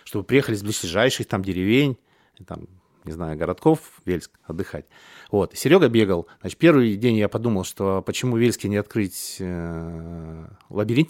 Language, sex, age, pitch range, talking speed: Russian, male, 30-49, 95-130 Hz, 140 wpm